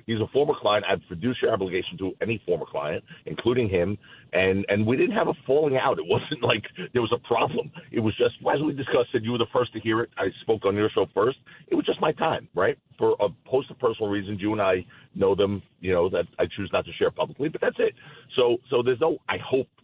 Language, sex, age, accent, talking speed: English, male, 40-59, American, 250 wpm